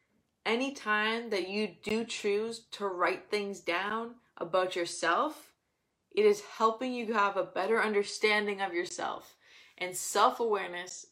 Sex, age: female, 20-39